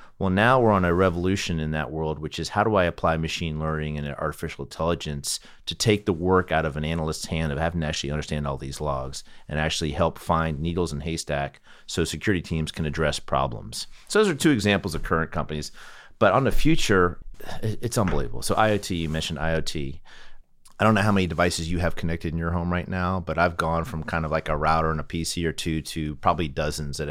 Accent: American